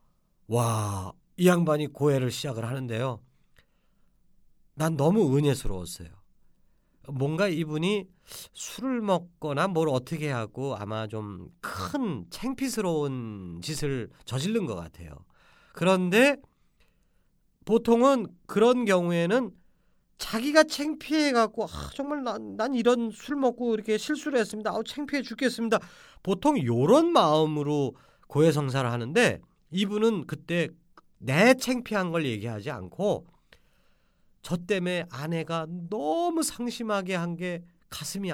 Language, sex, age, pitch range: Korean, male, 40-59, 140-230 Hz